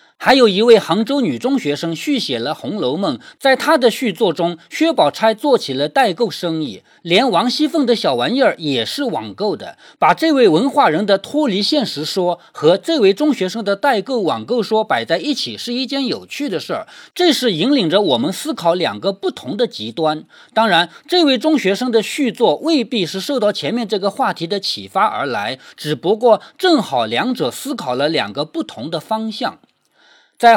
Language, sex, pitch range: Chinese, male, 195-290 Hz